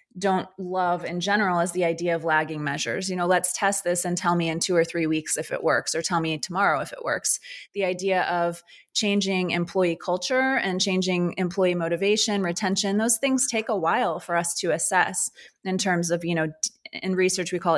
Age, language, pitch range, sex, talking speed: 20-39, English, 165-195 Hz, female, 210 wpm